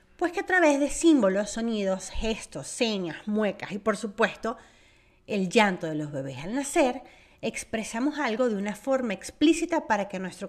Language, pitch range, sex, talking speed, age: Spanish, 190-270 Hz, female, 165 wpm, 30-49